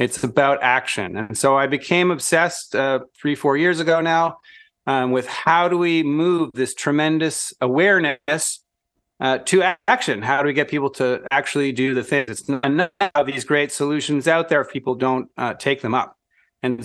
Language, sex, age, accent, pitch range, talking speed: English, male, 30-49, American, 130-160 Hz, 190 wpm